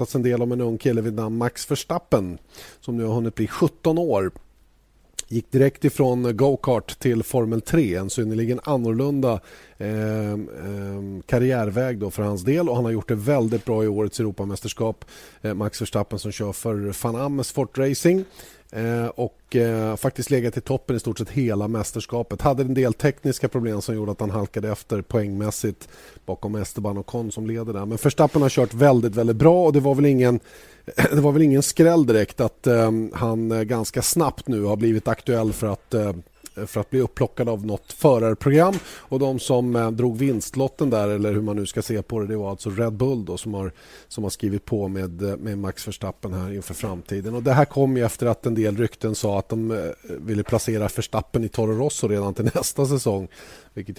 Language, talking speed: Swedish, 190 wpm